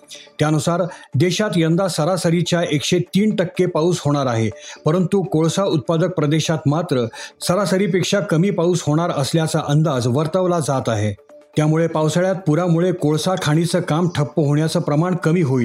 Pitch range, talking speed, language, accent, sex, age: 150-185 Hz, 125 wpm, Marathi, native, male, 40-59